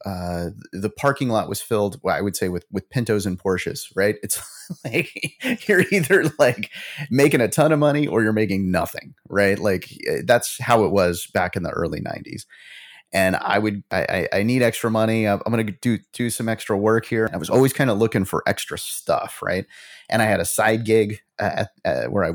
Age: 30-49